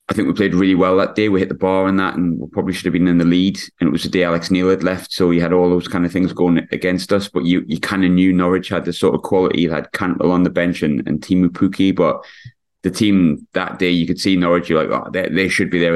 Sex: male